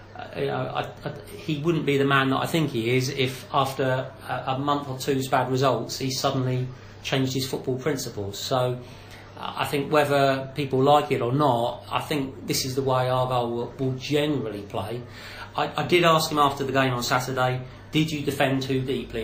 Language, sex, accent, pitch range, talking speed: English, male, British, 120-140 Hz, 185 wpm